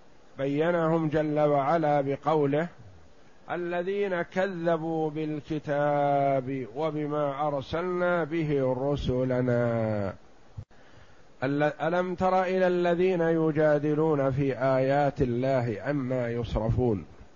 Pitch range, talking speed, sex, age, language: 140-165 Hz, 75 wpm, male, 50-69, Arabic